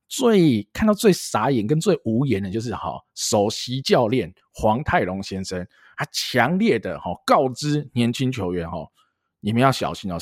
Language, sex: Chinese, male